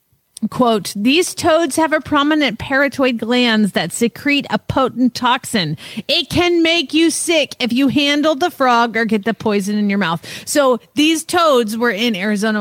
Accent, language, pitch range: American, English, 215-300 Hz